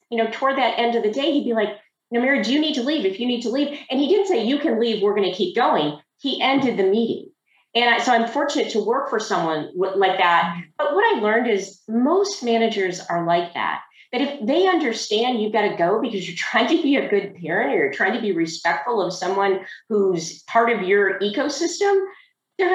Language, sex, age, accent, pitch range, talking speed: English, female, 40-59, American, 190-260 Hz, 235 wpm